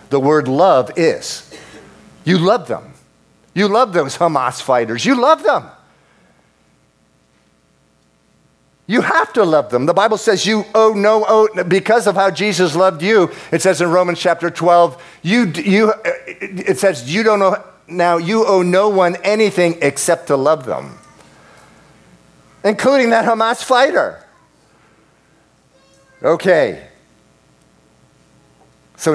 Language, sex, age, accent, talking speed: English, male, 50-69, American, 120 wpm